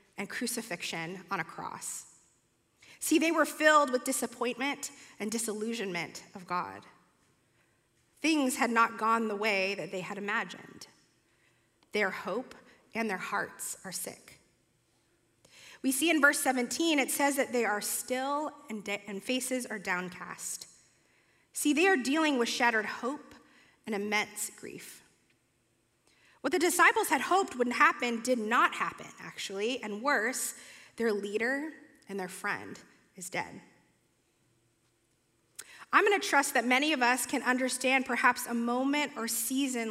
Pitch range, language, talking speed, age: 205-265 Hz, English, 140 wpm, 30-49